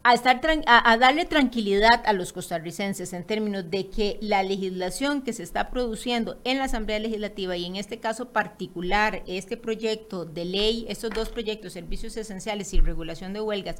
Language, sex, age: Spanish, female, 30-49